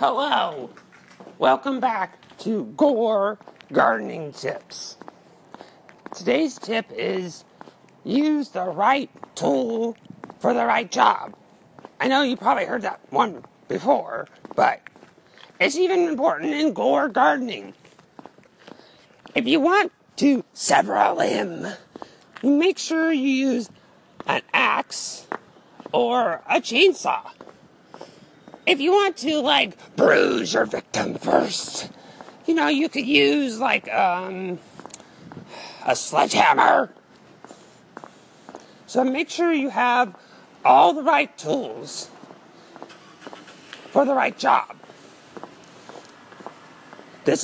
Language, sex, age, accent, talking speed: English, male, 40-59, American, 100 wpm